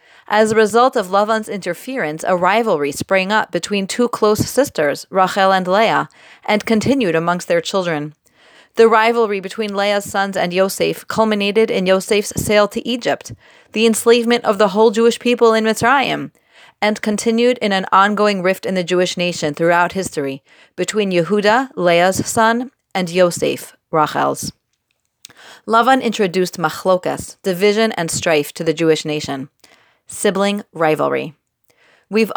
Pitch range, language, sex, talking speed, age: 175-220 Hz, English, female, 140 wpm, 30-49